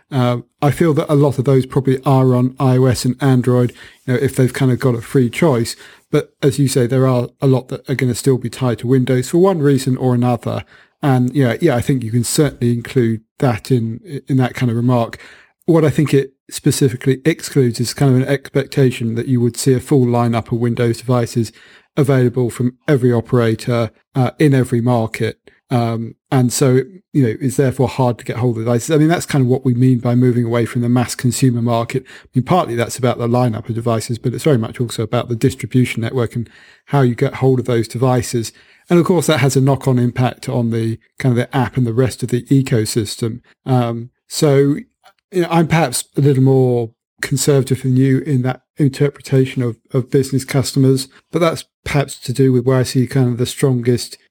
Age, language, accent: 40-59, English, British